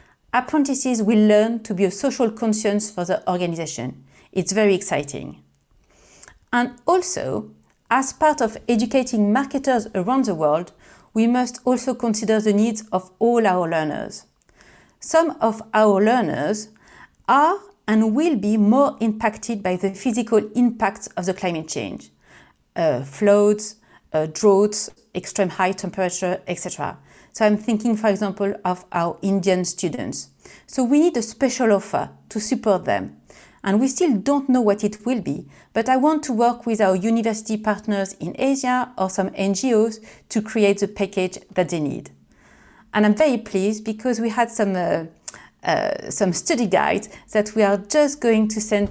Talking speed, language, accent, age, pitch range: 155 wpm, English, French, 40-59, 195-240 Hz